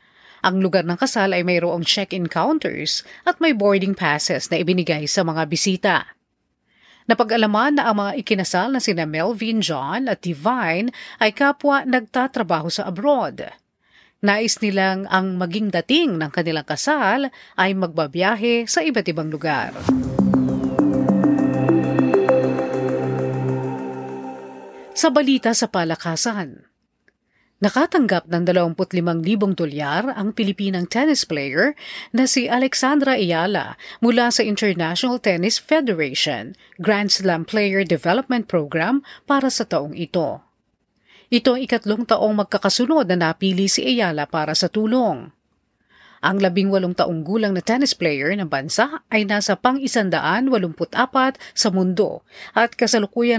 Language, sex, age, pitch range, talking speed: Filipino, female, 40-59, 170-240 Hz, 120 wpm